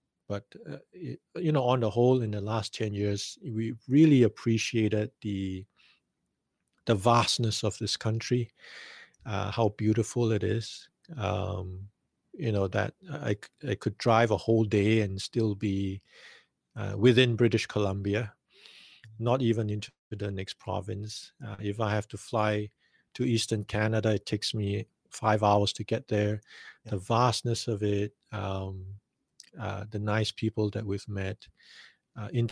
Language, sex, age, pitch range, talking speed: English, male, 50-69, 105-120 Hz, 150 wpm